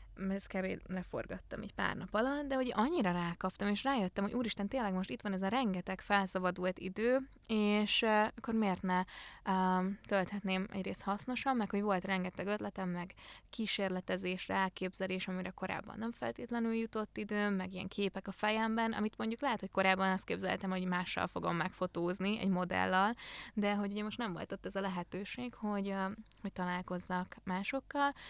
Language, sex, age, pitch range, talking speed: Hungarian, female, 20-39, 190-225 Hz, 165 wpm